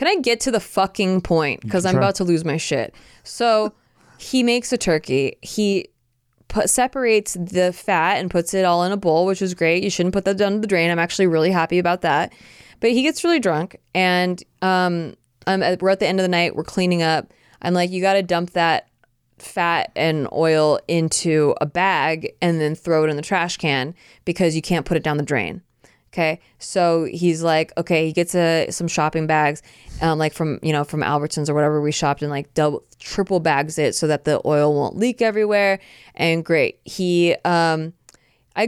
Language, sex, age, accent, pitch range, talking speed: English, female, 20-39, American, 160-220 Hz, 205 wpm